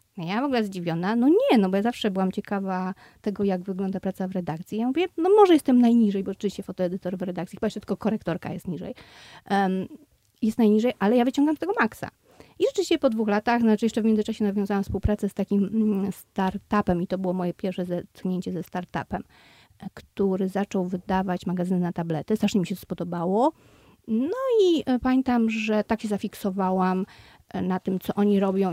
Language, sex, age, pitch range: Polish, female, 30-49, 185-235 Hz